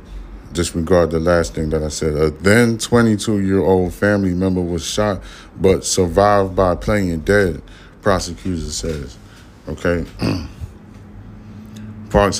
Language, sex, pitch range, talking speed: English, male, 85-95 Hz, 110 wpm